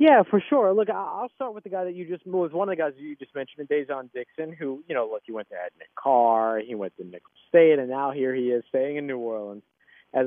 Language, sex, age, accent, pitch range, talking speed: English, male, 30-49, American, 130-200 Hz, 275 wpm